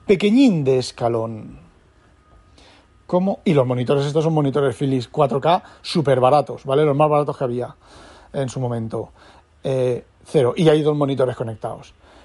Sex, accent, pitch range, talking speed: male, Spanish, 125-155 Hz, 145 wpm